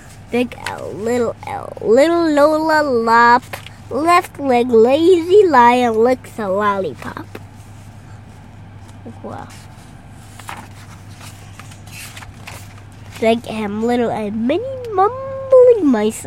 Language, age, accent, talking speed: English, 10-29, American, 80 wpm